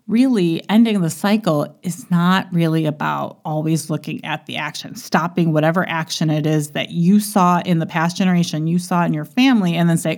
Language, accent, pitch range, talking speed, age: English, American, 155-190 Hz, 195 wpm, 30-49